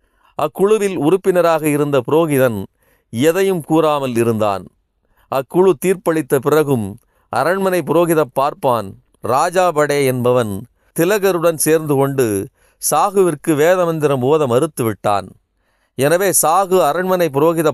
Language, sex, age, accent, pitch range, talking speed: Tamil, male, 40-59, native, 125-170 Hz, 90 wpm